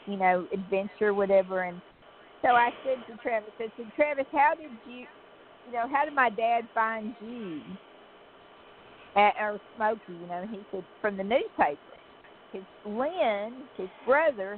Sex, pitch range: female, 195-240 Hz